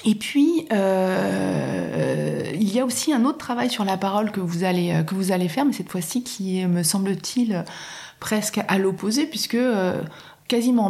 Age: 30-49